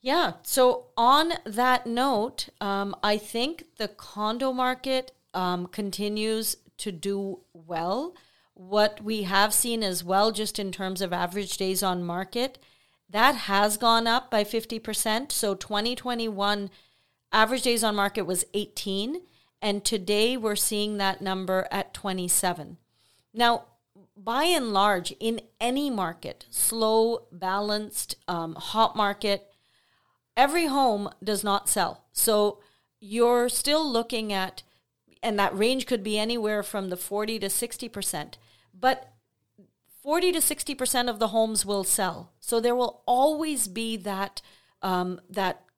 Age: 40-59